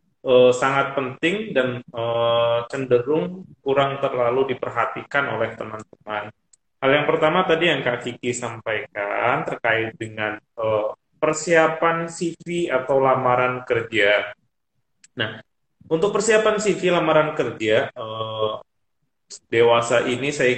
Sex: male